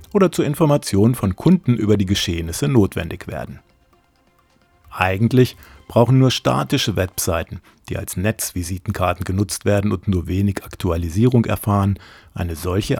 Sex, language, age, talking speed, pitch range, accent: male, German, 50-69, 125 wpm, 90-125 Hz, German